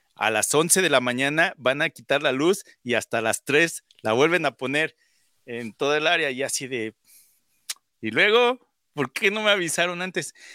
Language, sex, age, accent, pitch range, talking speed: Spanish, male, 40-59, Mexican, 115-170 Hz, 195 wpm